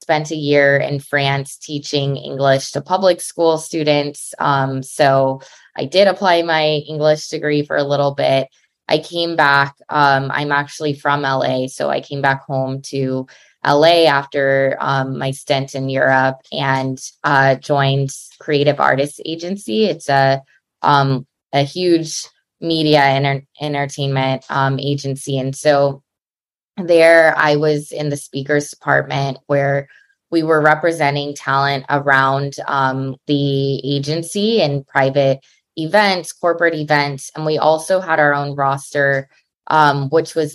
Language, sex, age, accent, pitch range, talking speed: English, female, 20-39, American, 135-155 Hz, 140 wpm